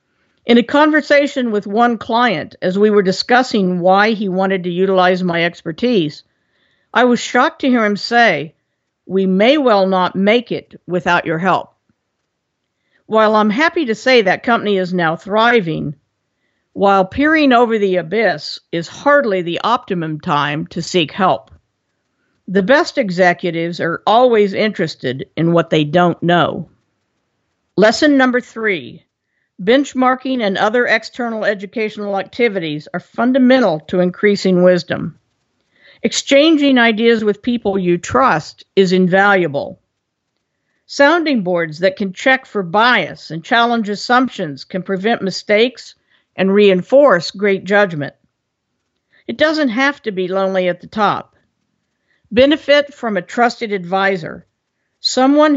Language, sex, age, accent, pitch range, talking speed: English, female, 50-69, American, 180-240 Hz, 130 wpm